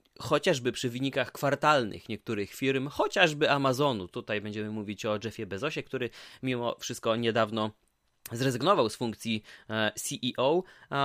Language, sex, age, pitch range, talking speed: Polish, male, 20-39, 120-155 Hz, 120 wpm